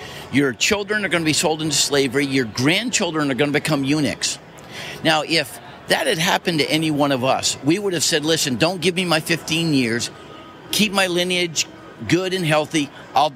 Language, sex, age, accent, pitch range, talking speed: English, male, 50-69, American, 135-165 Hz, 200 wpm